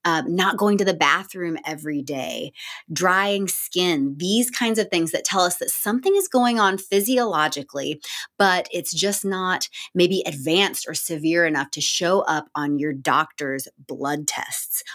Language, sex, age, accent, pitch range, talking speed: English, female, 20-39, American, 155-200 Hz, 160 wpm